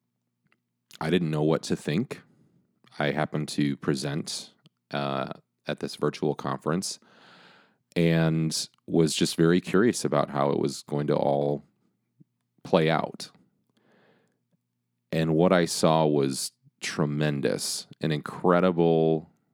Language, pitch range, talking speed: English, 70-80 Hz, 115 wpm